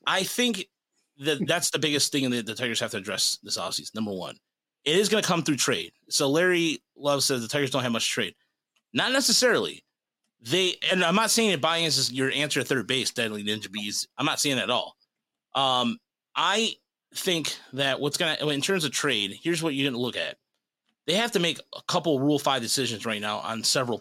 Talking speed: 215 wpm